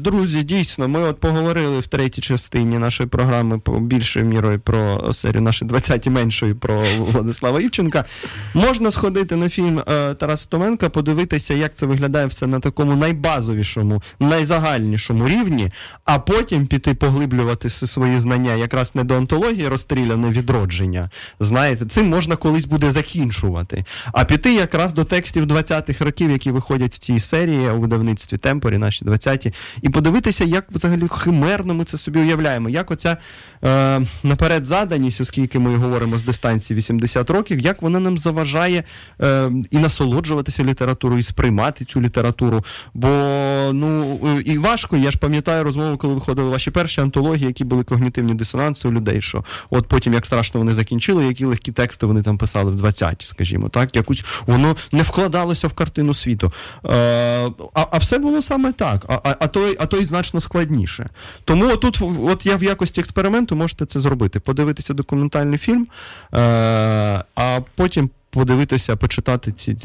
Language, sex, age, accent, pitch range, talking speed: Russian, male, 20-39, native, 120-160 Hz, 155 wpm